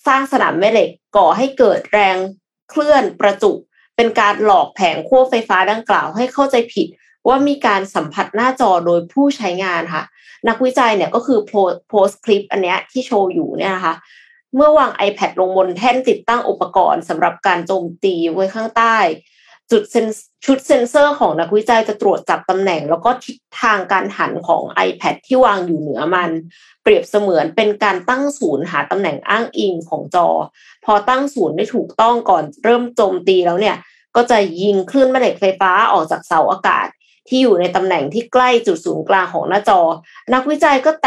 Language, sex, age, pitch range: Thai, female, 20-39, 190-260 Hz